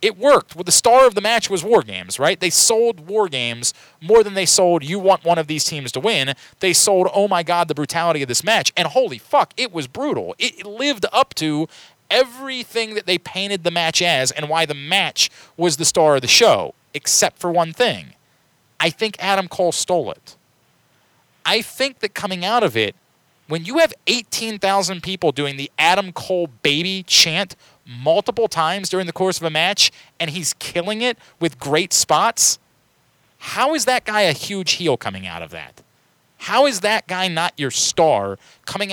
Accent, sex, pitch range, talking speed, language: American, male, 160-210 Hz, 195 wpm, English